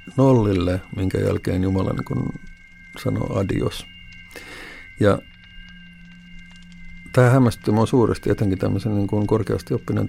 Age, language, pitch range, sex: 50-69, Finnish, 90-115 Hz, male